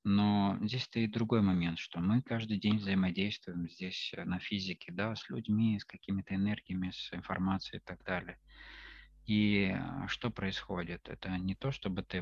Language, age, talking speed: Russian, 20-39, 155 wpm